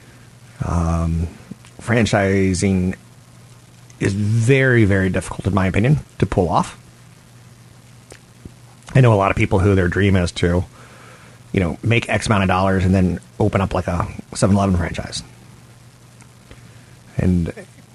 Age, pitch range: 30-49, 90-115 Hz